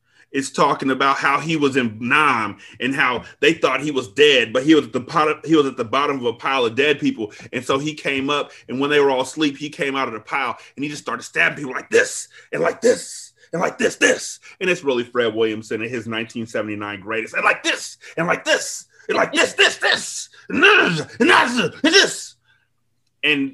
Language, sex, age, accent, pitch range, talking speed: English, male, 30-49, American, 115-165 Hz, 225 wpm